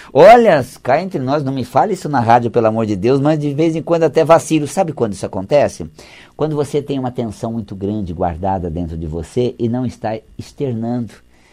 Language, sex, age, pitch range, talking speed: Portuguese, male, 50-69, 110-165 Hz, 210 wpm